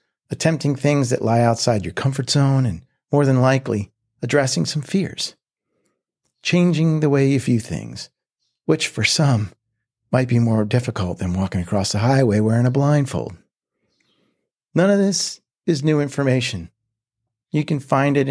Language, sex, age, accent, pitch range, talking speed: English, male, 50-69, American, 115-145 Hz, 150 wpm